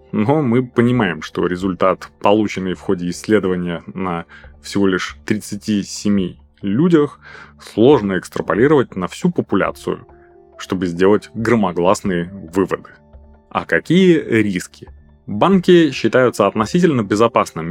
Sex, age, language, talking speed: male, 20-39, Russian, 100 wpm